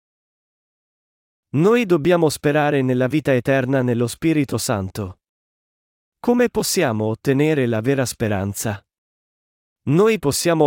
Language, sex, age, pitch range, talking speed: Italian, male, 40-59, 120-155 Hz, 95 wpm